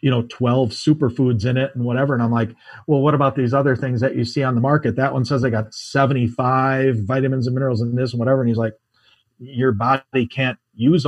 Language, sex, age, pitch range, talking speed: English, male, 40-59, 120-145 Hz, 235 wpm